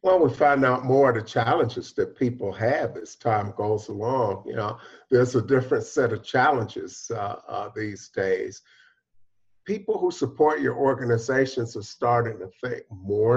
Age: 50-69